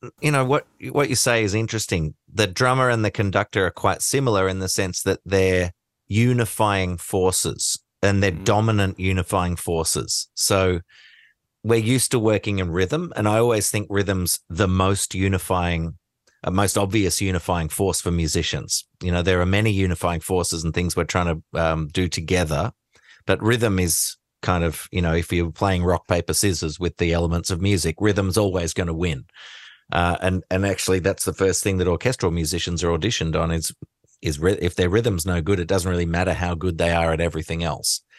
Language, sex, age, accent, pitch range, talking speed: English, male, 30-49, Australian, 85-100 Hz, 190 wpm